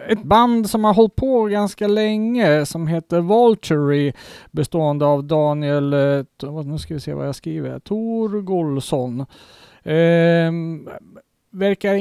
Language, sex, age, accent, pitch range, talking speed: Swedish, male, 40-59, Norwegian, 145-195 Hz, 120 wpm